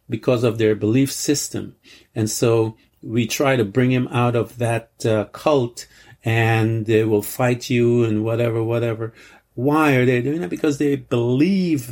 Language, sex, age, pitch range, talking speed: English, male, 50-69, 105-125 Hz, 165 wpm